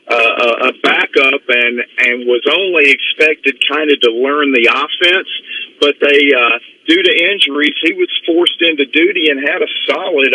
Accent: American